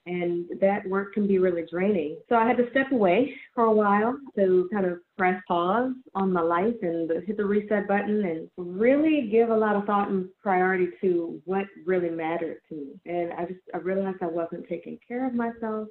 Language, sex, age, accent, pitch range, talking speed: English, female, 30-49, American, 180-230 Hz, 205 wpm